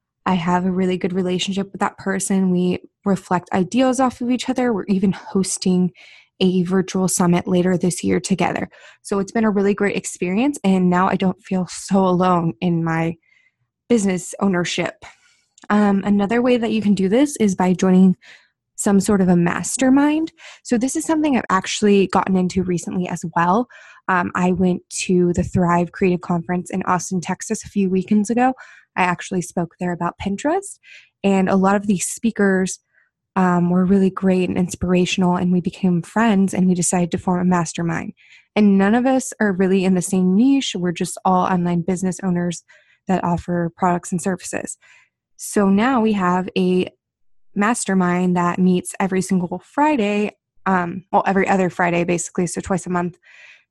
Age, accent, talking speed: 20-39, American, 175 wpm